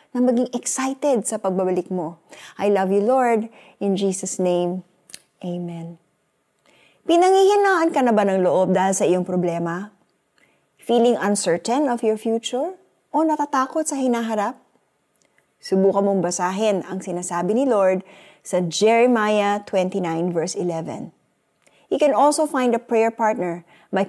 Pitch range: 185-245 Hz